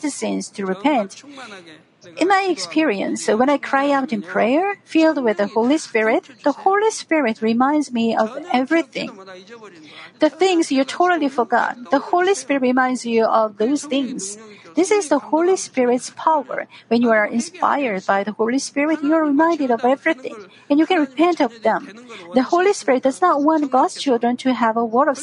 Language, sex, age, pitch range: Korean, female, 50-69, 220-295 Hz